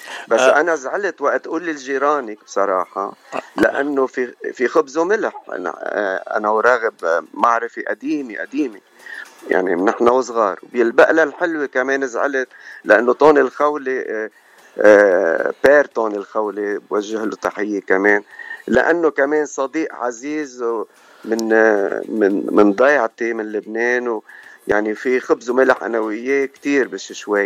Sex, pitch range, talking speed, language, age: male, 115-150 Hz, 115 wpm, Arabic, 50-69